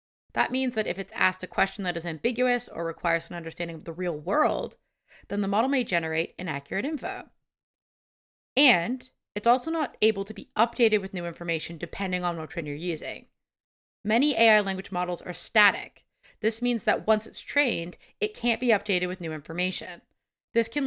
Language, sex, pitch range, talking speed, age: English, female, 170-230 Hz, 185 wpm, 30-49